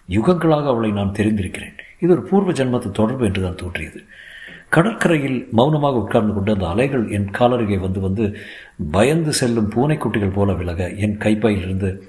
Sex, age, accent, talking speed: male, 50-69, native, 140 wpm